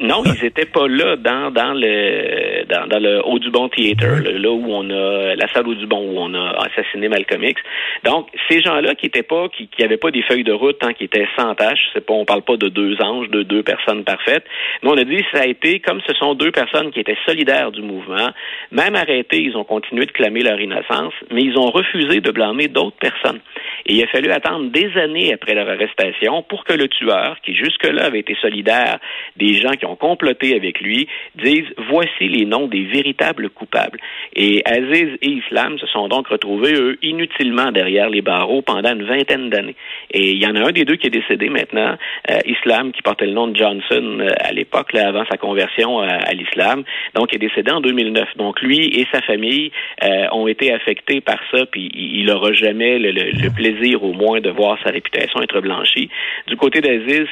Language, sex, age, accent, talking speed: French, male, 50-69, Canadian, 210 wpm